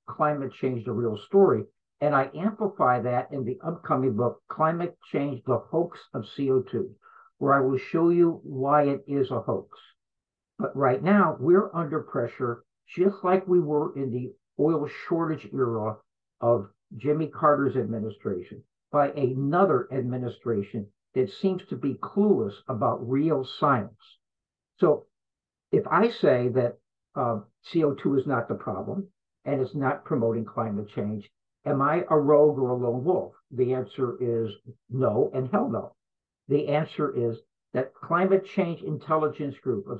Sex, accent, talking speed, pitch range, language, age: male, American, 150 wpm, 125-165 Hz, English, 60-79